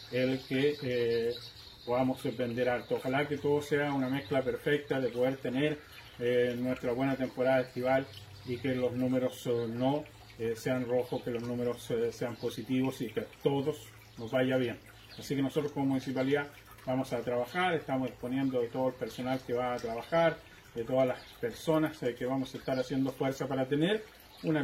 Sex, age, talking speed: male, 30-49, 185 wpm